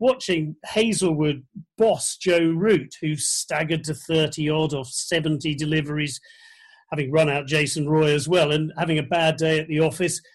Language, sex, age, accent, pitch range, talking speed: English, male, 40-59, British, 160-225 Hz, 155 wpm